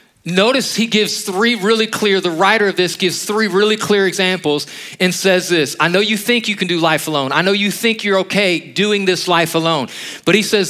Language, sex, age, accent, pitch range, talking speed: English, male, 40-59, American, 165-205 Hz, 225 wpm